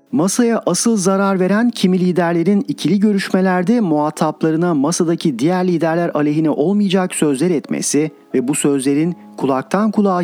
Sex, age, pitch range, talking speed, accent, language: male, 40-59, 140-190 Hz, 125 wpm, native, Turkish